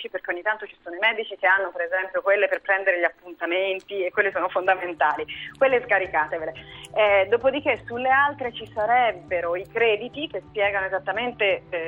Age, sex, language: 30-49, female, Italian